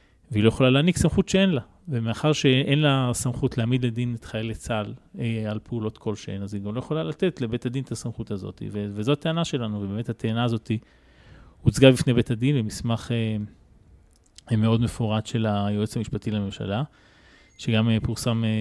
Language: Hebrew